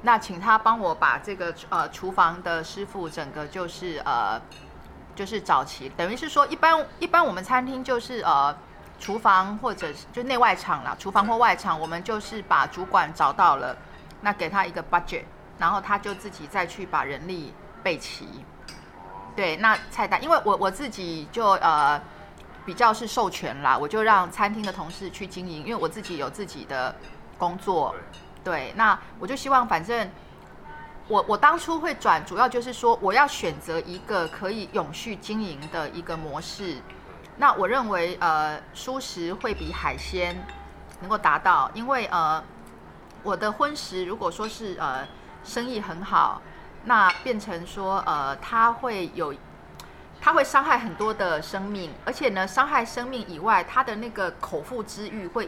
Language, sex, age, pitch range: Chinese, female, 30-49, 175-235 Hz